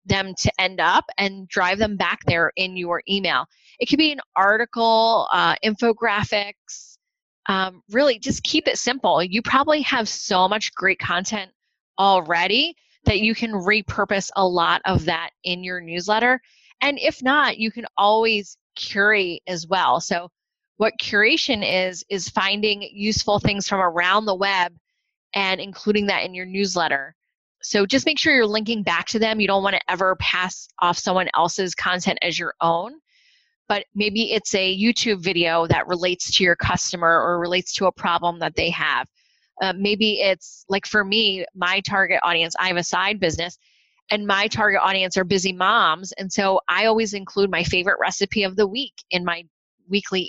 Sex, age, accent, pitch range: female, 20-39, American, 185-225 Hz